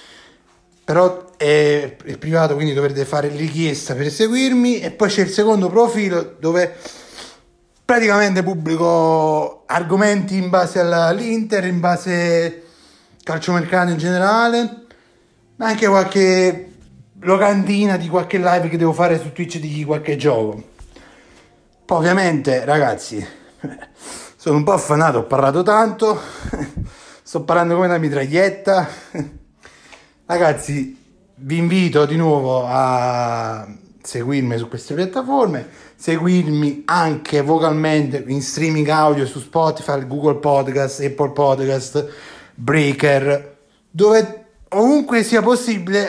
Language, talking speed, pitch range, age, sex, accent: Italian, 110 wpm, 145-190 Hz, 30-49, male, native